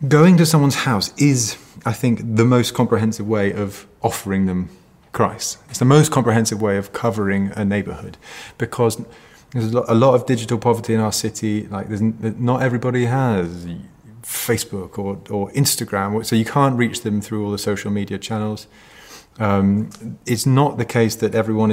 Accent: British